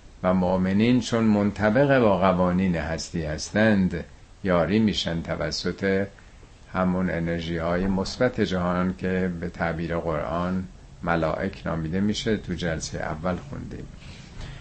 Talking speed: 110 wpm